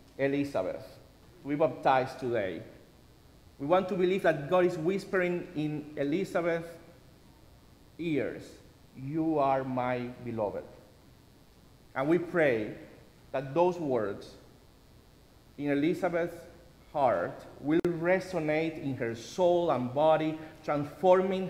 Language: English